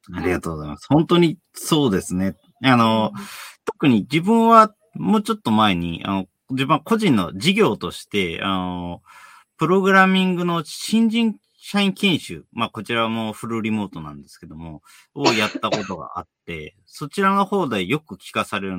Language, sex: Japanese, male